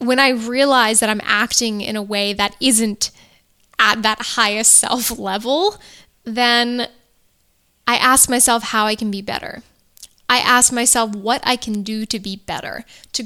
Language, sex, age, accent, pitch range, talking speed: English, female, 10-29, American, 215-250 Hz, 165 wpm